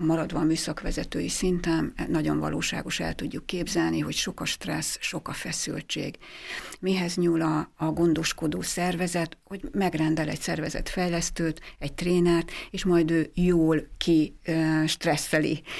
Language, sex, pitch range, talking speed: Hungarian, female, 155-175 Hz, 135 wpm